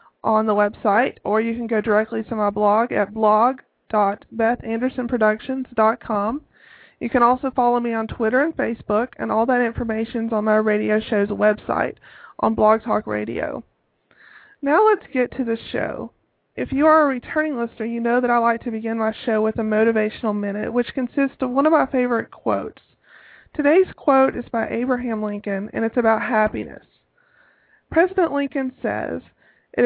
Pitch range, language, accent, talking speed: 215-250 Hz, English, American, 165 wpm